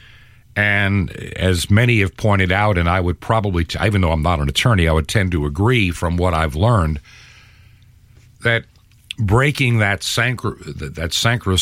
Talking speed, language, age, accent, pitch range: 165 wpm, English, 50-69, American, 95-115 Hz